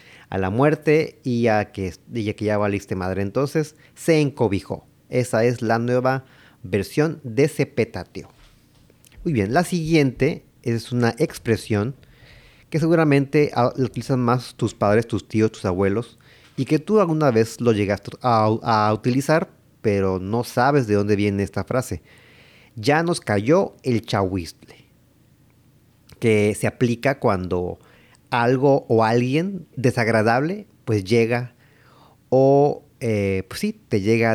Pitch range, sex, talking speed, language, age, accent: 110-140 Hz, male, 135 wpm, Spanish, 40-59, Mexican